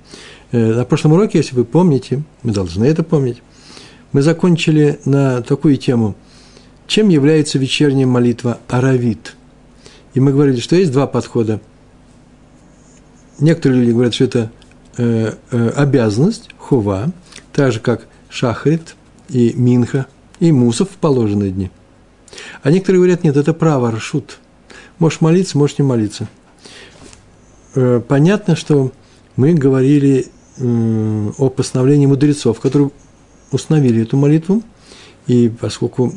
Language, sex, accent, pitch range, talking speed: Russian, male, native, 115-145 Hz, 115 wpm